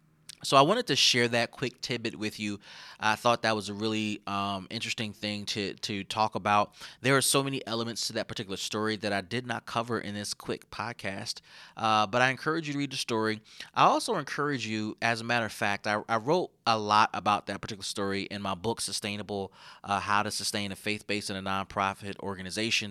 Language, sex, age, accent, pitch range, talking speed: English, male, 30-49, American, 100-120 Hz, 215 wpm